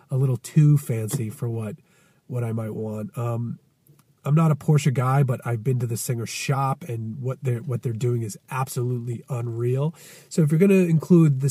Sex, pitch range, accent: male, 125-160 Hz, American